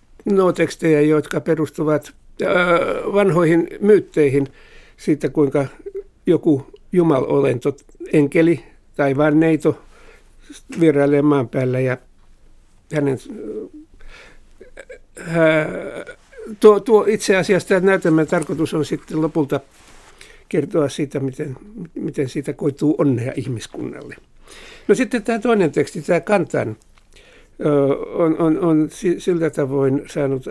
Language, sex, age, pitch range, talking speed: Finnish, male, 60-79, 145-205 Hz, 95 wpm